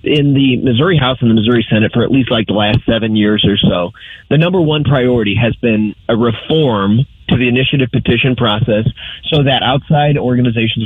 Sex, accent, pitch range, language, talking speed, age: male, American, 115-160 Hz, English, 195 wpm, 30-49